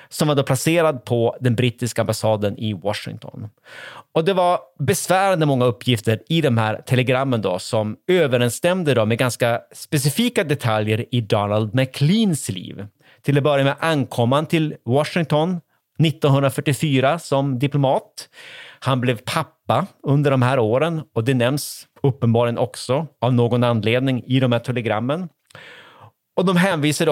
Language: Swedish